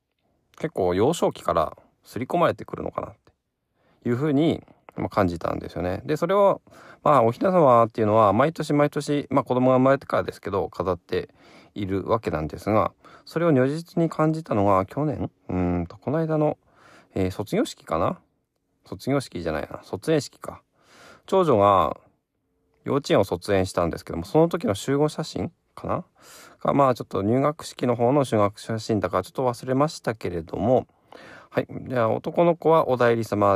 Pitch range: 100-150 Hz